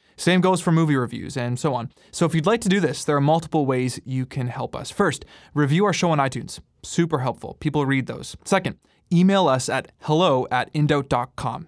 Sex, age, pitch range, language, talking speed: male, 20-39, 125-160 Hz, English, 210 wpm